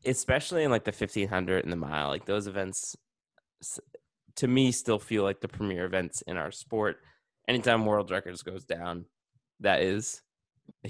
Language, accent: English, American